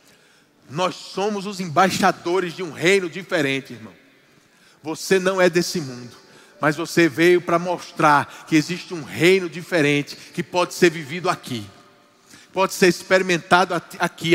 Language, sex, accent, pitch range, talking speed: Portuguese, male, Brazilian, 135-185 Hz, 140 wpm